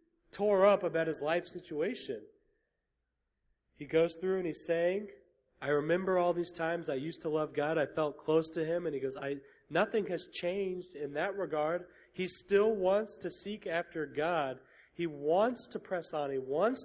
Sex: male